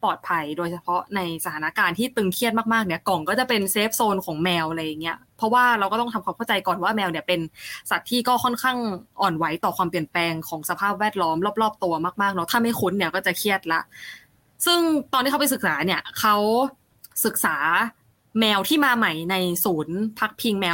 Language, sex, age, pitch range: Thai, female, 20-39, 175-230 Hz